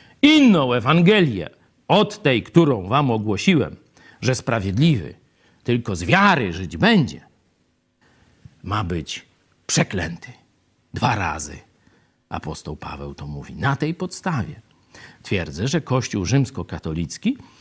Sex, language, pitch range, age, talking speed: male, Polish, 100-155 Hz, 50-69, 100 wpm